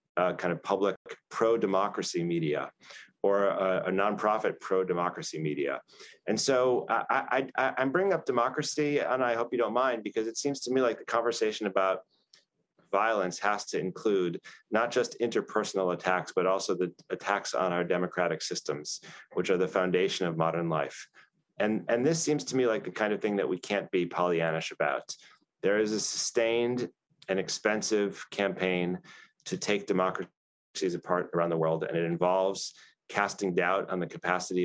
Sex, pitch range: male, 90-110 Hz